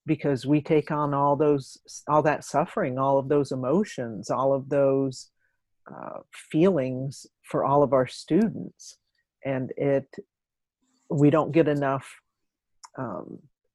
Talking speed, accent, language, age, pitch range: 130 wpm, American, English, 50-69, 135-160 Hz